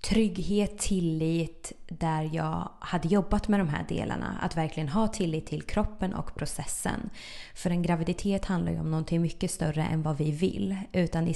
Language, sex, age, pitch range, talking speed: Swedish, female, 20-39, 160-200 Hz, 175 wpm